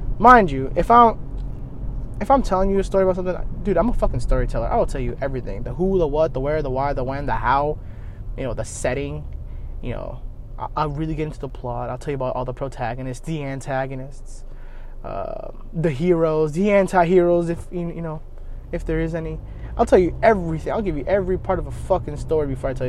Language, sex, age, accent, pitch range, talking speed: English, male, 20-39, American, 125-170 Hz, 215 wpm